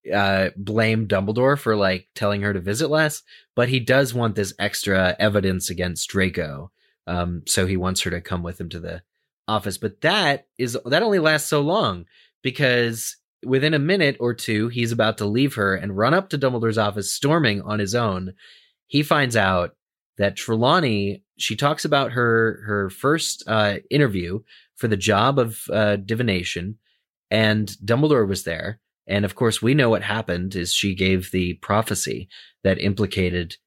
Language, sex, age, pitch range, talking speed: English, male, 30-49, 95-135 Hz, 175 wpm